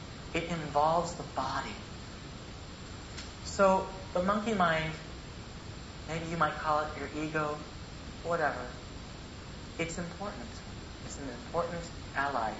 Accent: American